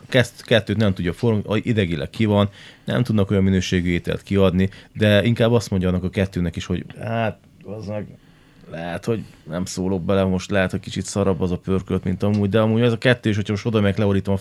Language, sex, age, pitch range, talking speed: Hungarian, male, 30-49, 95-110 Hz, 215 wpm